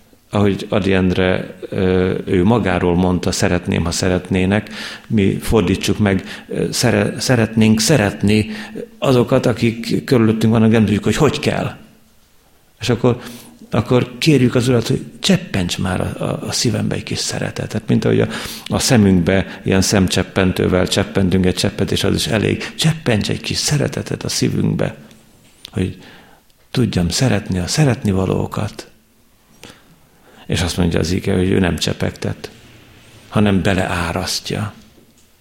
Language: Hungarian